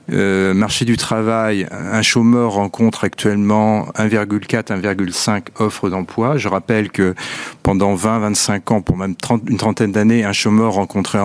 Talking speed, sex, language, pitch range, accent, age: 140 wpm, male, French, 100-125 Hz, French, 40-59